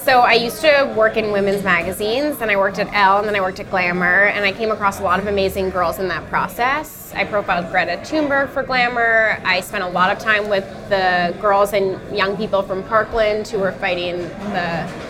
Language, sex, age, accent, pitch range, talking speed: English, female, 10-29, American, 190-235 Hz, 220 wpm